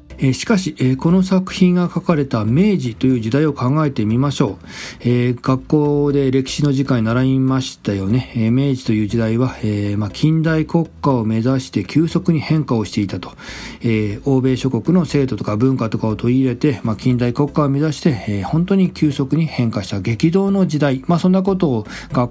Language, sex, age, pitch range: Japanese, male, 40-59, 115-155 Hz